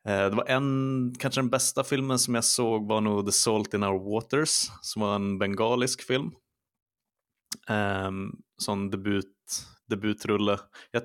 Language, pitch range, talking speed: Swedish, 95-115 Hz, 145 wpm